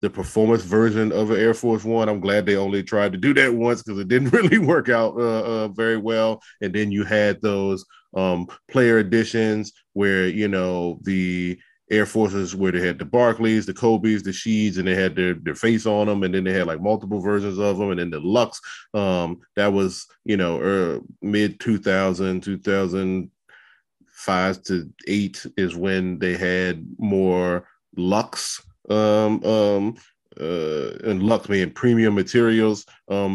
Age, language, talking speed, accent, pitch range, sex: 20-39, English, 175 wpm, American, 90-105 Hz, male